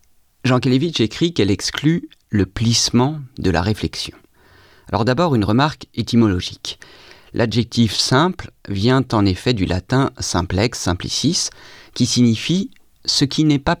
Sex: male